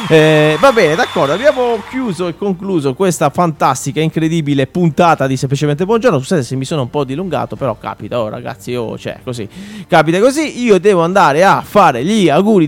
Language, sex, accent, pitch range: Italian, male, native, 140-195 Hz